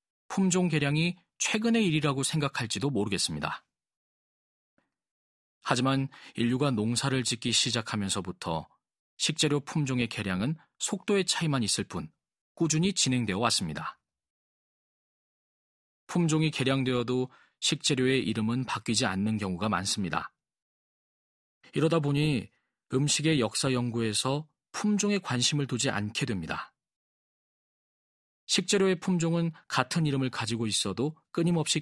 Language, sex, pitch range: Korean, male, 110-155 Hz